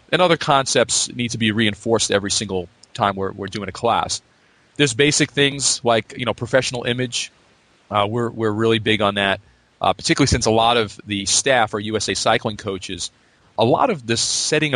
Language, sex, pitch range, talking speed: English, male, 95-115 Hz, 190 wpm